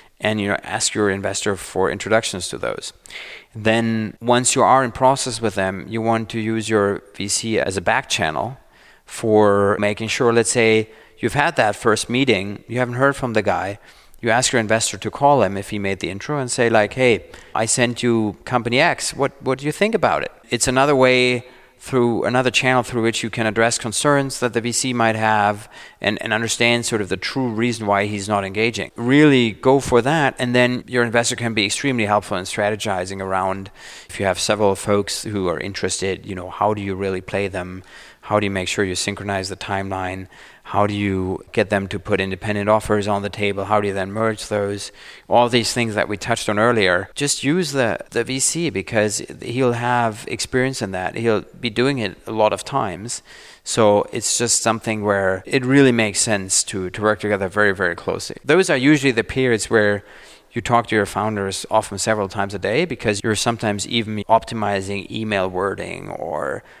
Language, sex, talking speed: German, male, 205 wpm